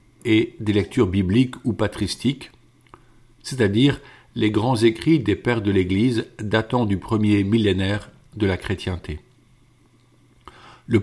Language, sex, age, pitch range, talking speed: French, male, 50-69, 105-125 Hz, 120 wpm